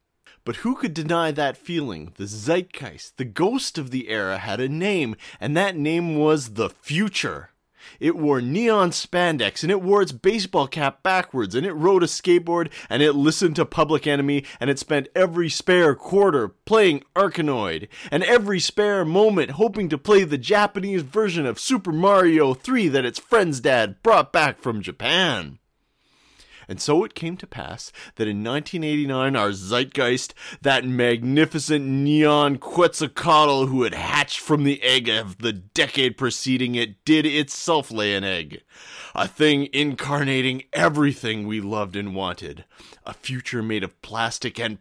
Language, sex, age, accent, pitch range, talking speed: English, male, 30-49, American, 120-175 Hz, 160 wpm